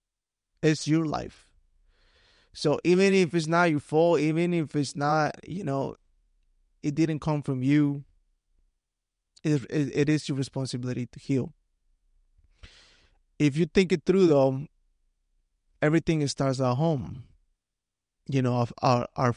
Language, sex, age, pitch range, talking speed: English, male, 20-39, 125-150 Hz, 135 wpm